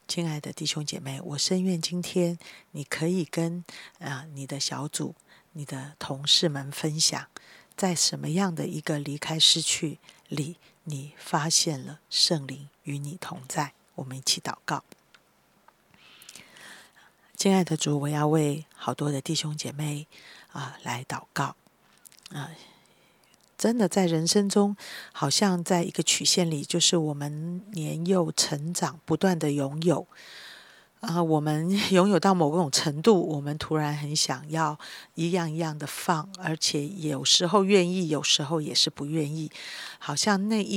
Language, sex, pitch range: Chinese, female, 150-180 Hz